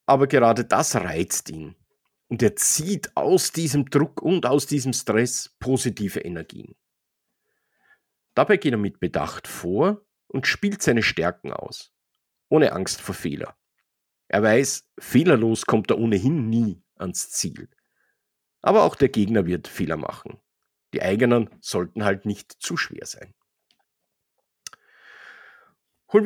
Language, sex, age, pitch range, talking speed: German, male, 50-69, 105-145 Hz, 130 wpm